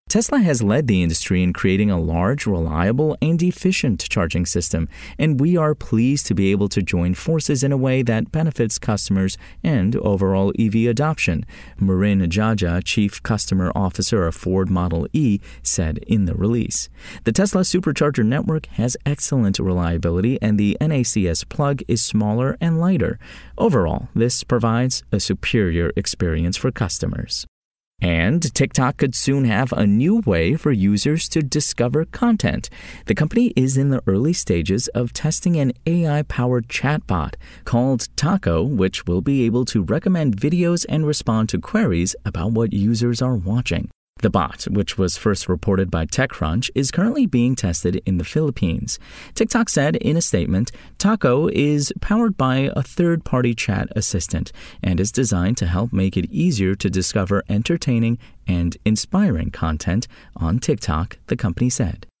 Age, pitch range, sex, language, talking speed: 30-49, 95-140 Hz, male, English, 155 wpm